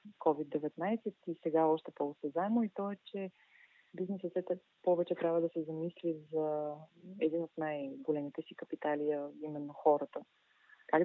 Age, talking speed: 30-49, 130 wpm